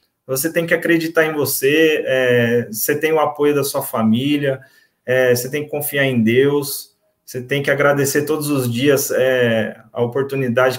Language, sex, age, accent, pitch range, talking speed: Portuguese, male, 20-39, Brazilian, 130-175 Hz, 155 wpm